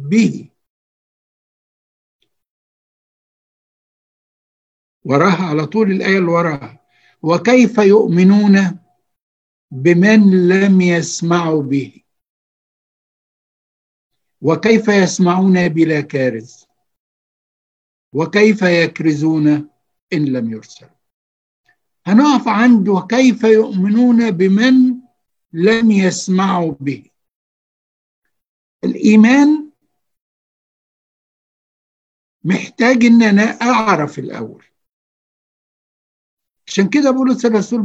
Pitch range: 155-220 Hz